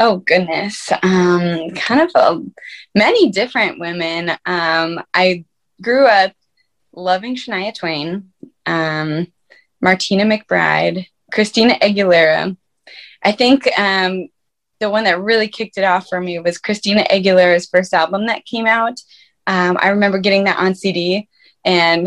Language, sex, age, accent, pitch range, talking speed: English, female, 20-39, American, 185-230 Hz, 135 wpm